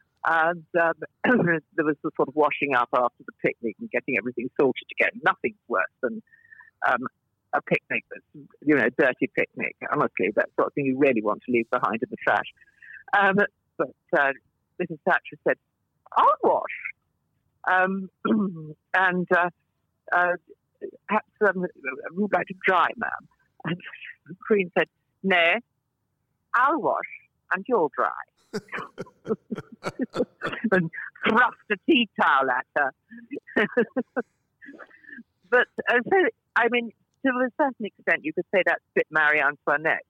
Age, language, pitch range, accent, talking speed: 50-69, English, 150-225 Hz, British, 150 wpm